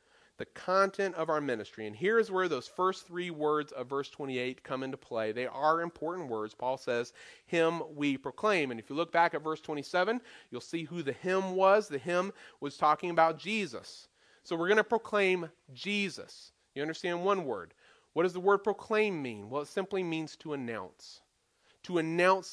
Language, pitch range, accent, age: English, 155-205 Hz, American, 40-59